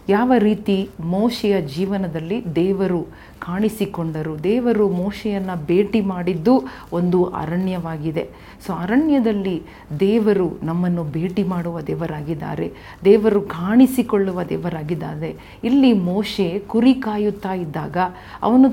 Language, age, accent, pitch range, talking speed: Kannada, 40-59, native, 170-205 Hz, 90 wpm